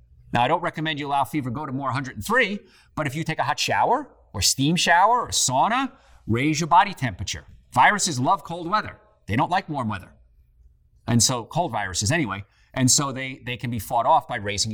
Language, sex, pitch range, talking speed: English, male, 110-175 Hz, 210 wpm